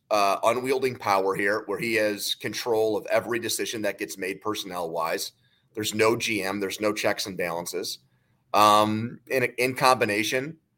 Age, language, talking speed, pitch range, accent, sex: 30-49, English, 155 wpm, 105-130 Hz, American, male